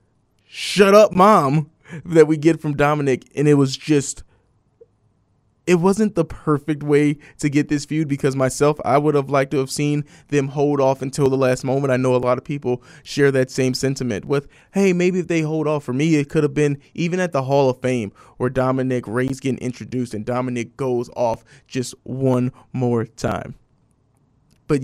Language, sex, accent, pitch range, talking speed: English, male, American, 125-150 Hz, 195 wpm